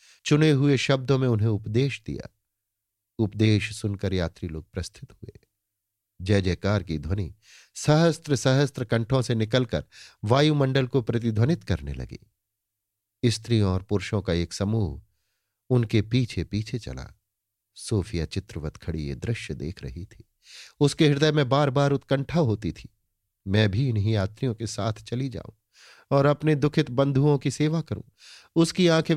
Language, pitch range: Hindi, 100-130 Hz